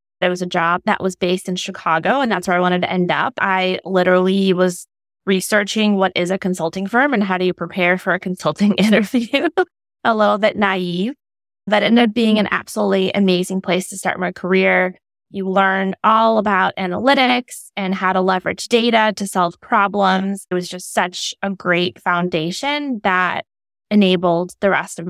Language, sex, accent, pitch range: English, female, American, 185-220 Hz